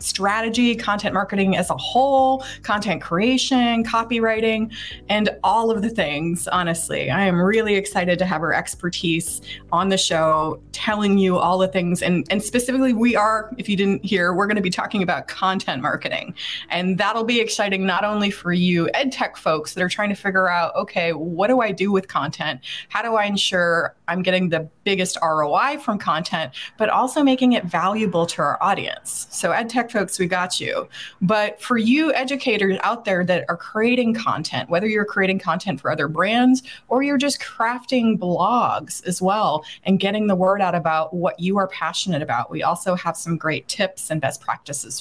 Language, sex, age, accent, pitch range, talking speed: English, female, 20-39, American, 175-230 Hz, 185 wpm